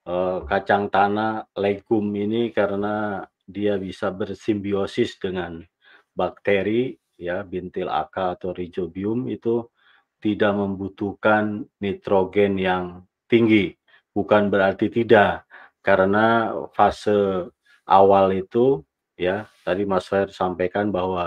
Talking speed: 95 wpm